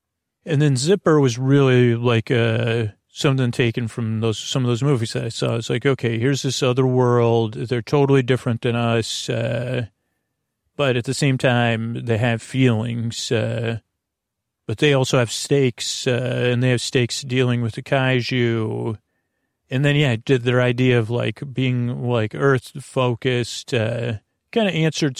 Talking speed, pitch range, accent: 165 wpm, 115-135 Hz, American